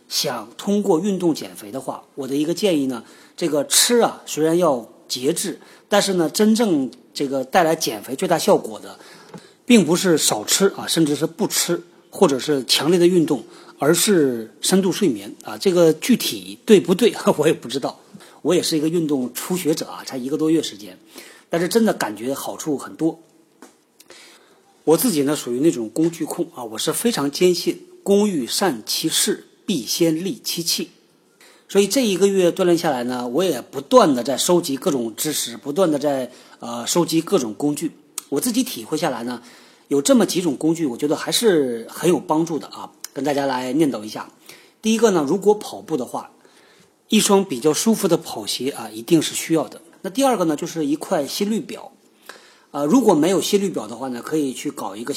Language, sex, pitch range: Chinese, male, 140-195 Hz